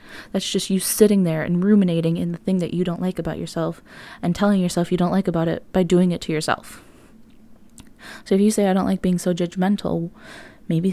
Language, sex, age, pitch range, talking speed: English, female, 20-39, 175-195 Hz, 220 wpm